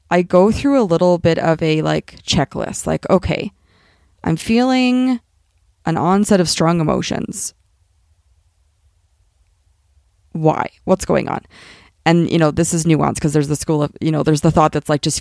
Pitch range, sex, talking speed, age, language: 155-185 Hz, female, 165 wpm, 20-39, English